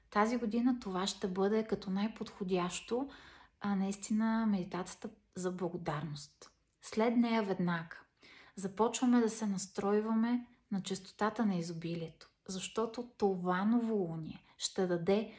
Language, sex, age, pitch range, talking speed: Bulgarian, female, 30-49, 185-225 Hz, 115 wpm